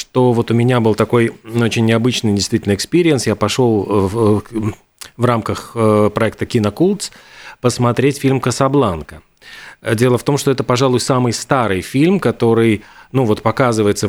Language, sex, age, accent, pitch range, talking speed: Russian, male, 40-59, native, 115-140 Hz, 140 wpm